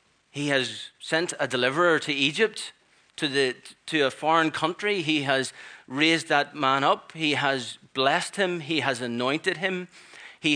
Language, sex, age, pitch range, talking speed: English, male, 30-49, 120-160 Hz, 160 wpm